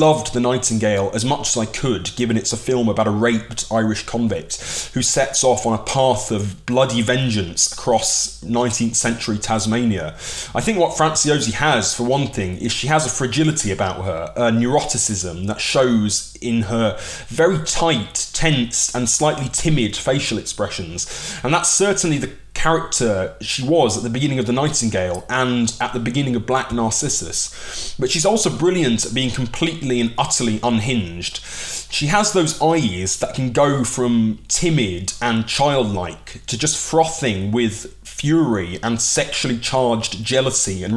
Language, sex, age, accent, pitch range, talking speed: English, male, 20-39, British, 110-140 Hz, 160 wpm